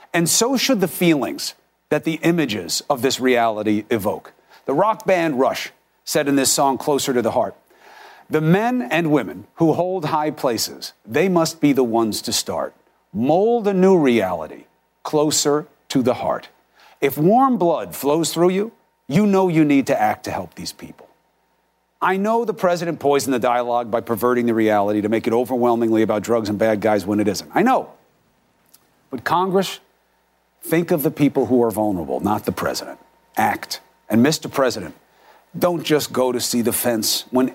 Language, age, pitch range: English, 40-59, 115-165 Hz